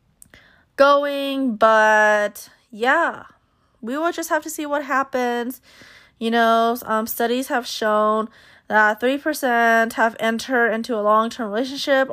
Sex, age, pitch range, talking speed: female, 20-39, 210-255 Hz, 130 wpm